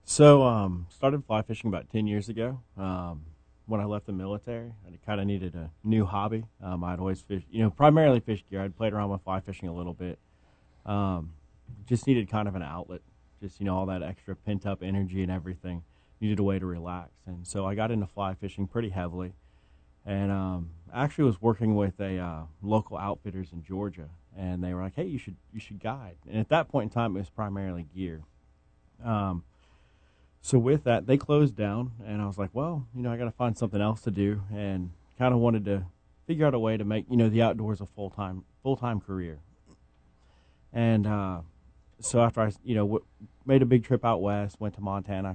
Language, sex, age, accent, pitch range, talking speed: English, male, 30-49, American, 90-110 Hz, 215 wpm